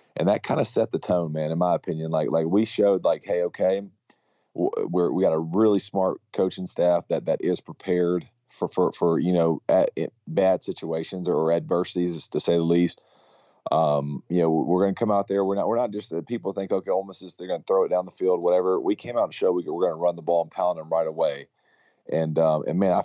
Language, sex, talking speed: English, male, 255 wpm